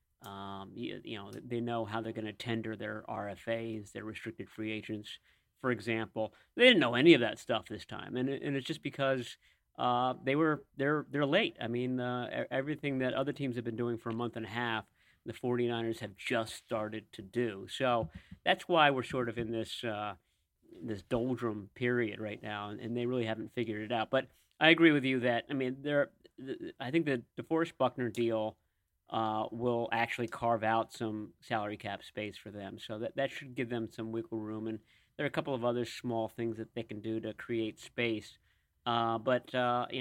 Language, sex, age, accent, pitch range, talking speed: English, male, 40-59, American, 110-130 Hz, 205 wpm